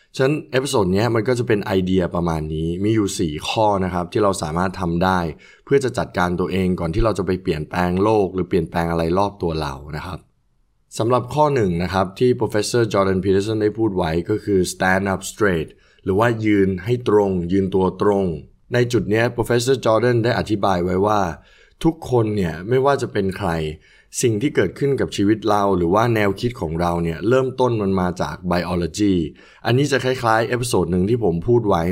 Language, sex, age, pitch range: Thai, male, 20-39, 90-115 Hz